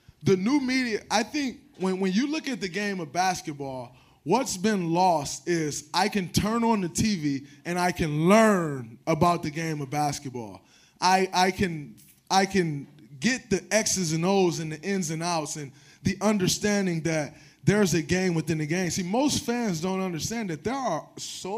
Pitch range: 160-220 Hz